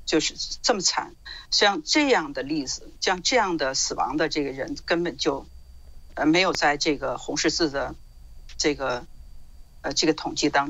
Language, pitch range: Chinese, 145-215 Hz